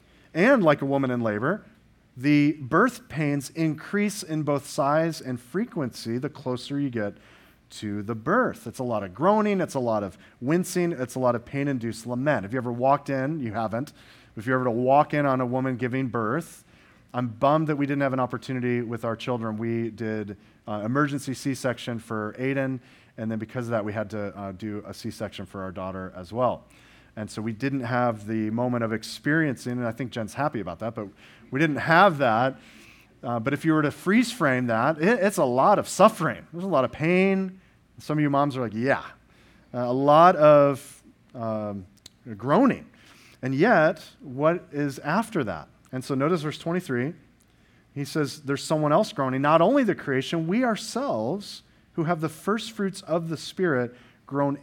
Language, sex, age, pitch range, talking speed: English, male, 40-59, 115-155 Hz, 195 wpm